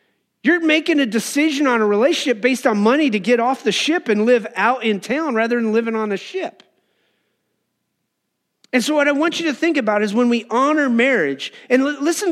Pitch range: 215-275 Hz